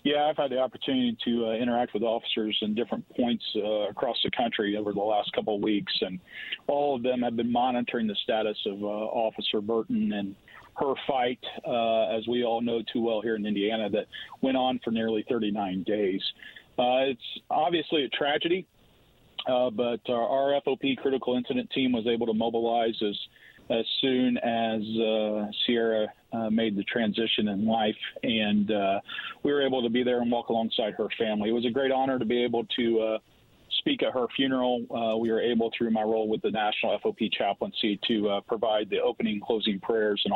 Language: English